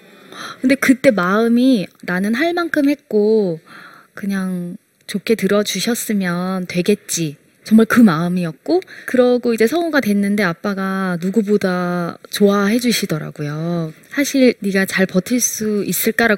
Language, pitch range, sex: Korean, 185-270 Hz, female